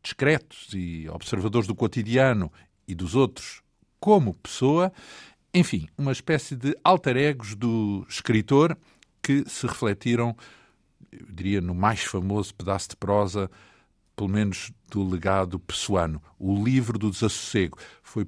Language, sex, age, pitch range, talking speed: Portuguese, male, 50-69, 95-130 Hz, 125 wpm